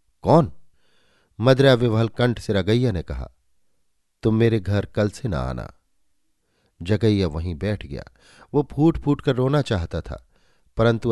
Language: Hindi